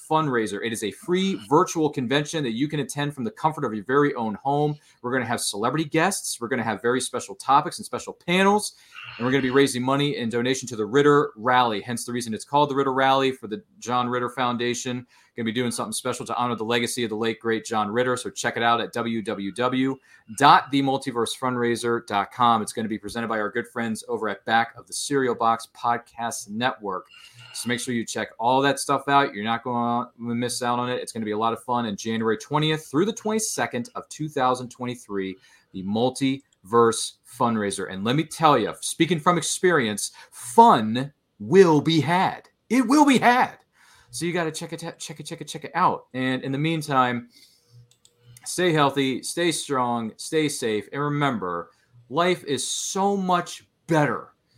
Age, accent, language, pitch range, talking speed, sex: 30-49, American, English, 115-150 Hz, 200 wpm, male